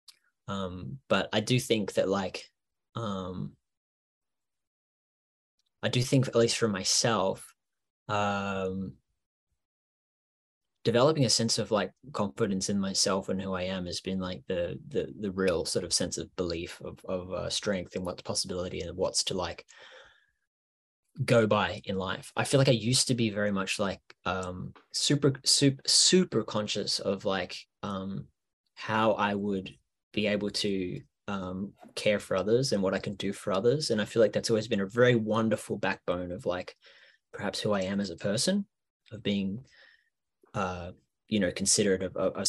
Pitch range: 90-115 Hz